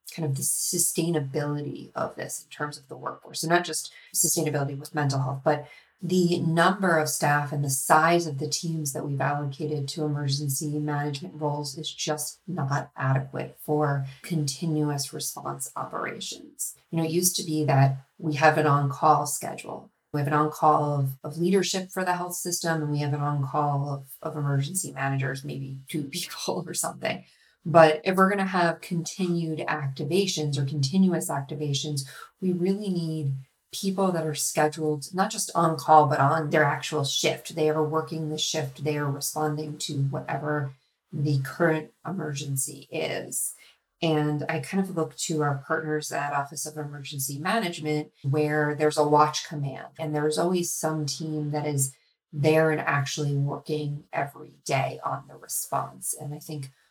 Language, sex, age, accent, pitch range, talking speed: English, female, 30-49, American, 145-165 Hz, 165 wpm